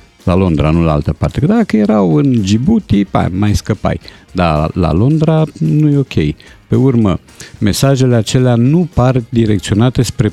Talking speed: 155 wpm